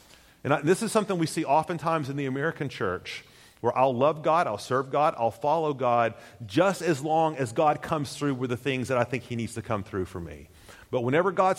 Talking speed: 230 wpm